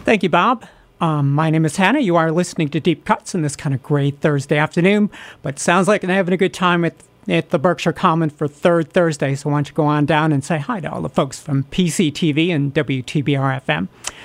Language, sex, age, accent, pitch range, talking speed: English, male, 50-69, American, 150-185 Hz, 230 wpm